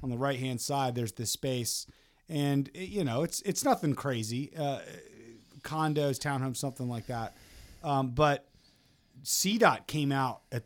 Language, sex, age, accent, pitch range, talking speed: English, male, 30-49, American, 120-145 Hz, 145 wpm